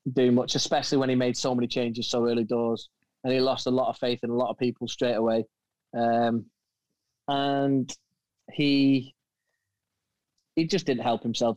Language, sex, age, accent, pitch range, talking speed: Finnish, male, 20-39, British, 115-135 Hz, 175 wpm